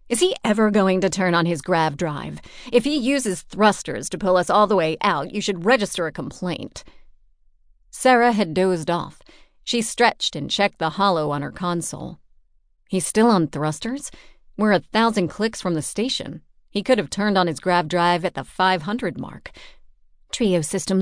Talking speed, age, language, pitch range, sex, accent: 185 wpm, 40-59, English, 165-215 Hz, female, American